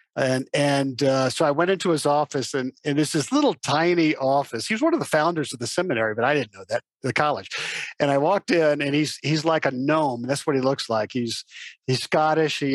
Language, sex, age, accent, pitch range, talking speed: English, male, 50-69, American, 140-185 Hz, 240 wpm